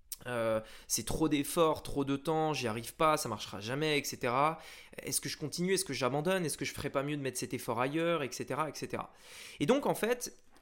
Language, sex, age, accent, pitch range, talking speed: French, male, 20-39, French, 145-195 Hz, 215 wpm